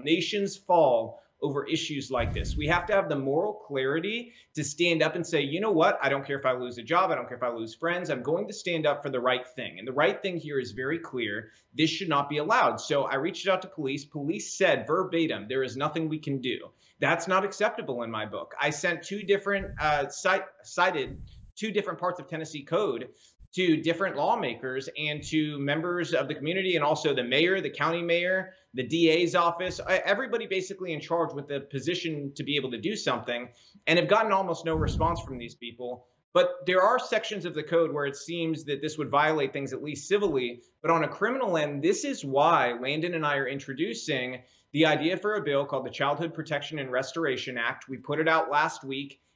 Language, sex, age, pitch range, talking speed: English, male, 30-49, 140-175 Hz, 220 wpm